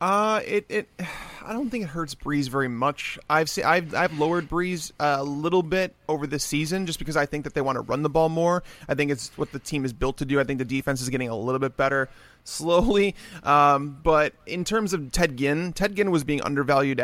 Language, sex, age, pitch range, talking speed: English, male, 30-49, 140-165 Hz, 240 wpm